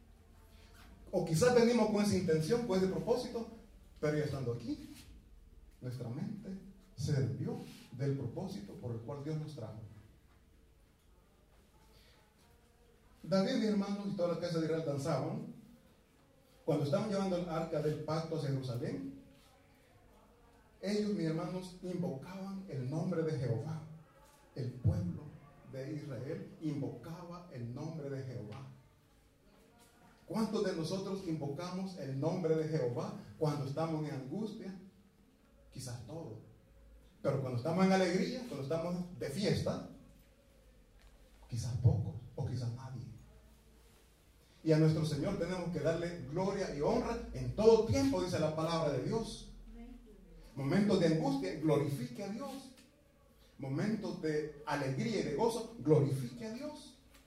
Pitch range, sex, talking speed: 130-195 Hz, male, 130 wpm